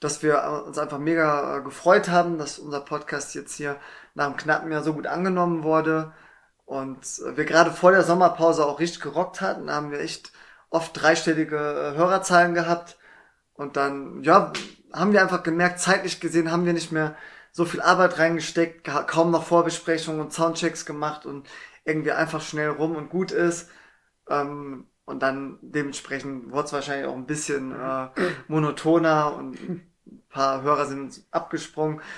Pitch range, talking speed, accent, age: 150-170 Hz, 160 wpm, German, 20-39